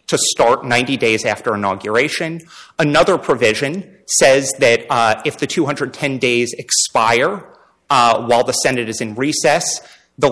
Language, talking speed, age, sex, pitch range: English, 140 wpm, 30-49, male, 115-155 Hz